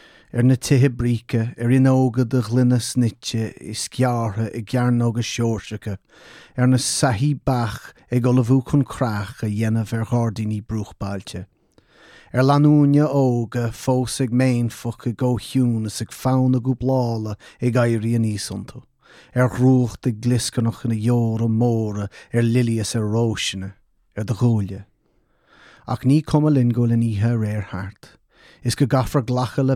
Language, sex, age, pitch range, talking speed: English, male, 30-49, 110-125 Hz, 115 wpm